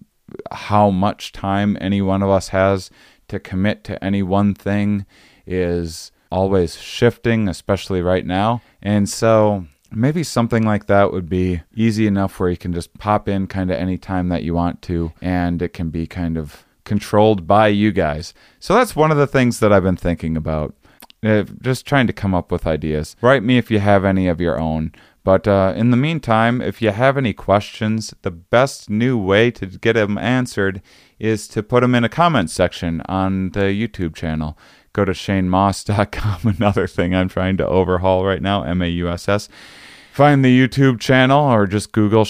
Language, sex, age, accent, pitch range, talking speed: English, male, 30-49, American, 90-110 Hz, 185 wpm